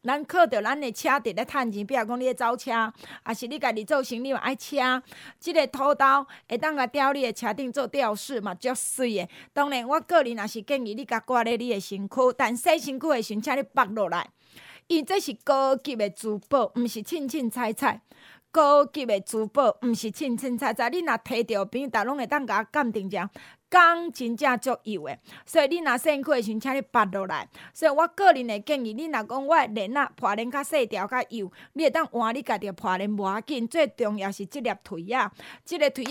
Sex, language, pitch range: female, Chinese, 225-290 Hz